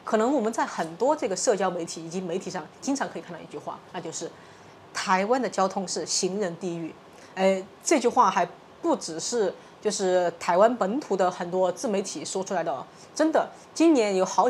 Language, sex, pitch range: Chinese, female, 180-250 Hz